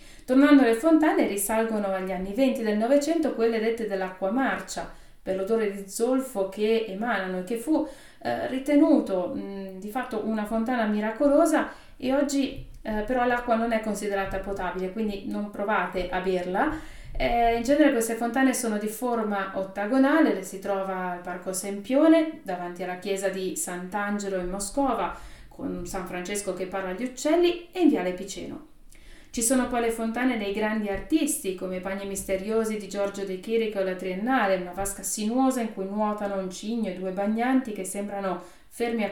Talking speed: 170 wpm